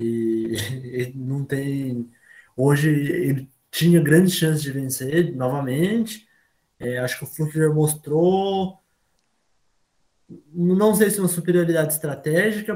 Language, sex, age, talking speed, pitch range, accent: Portuguese, male, 20-39, 115 wpm, 150-180 Hz, Brazilian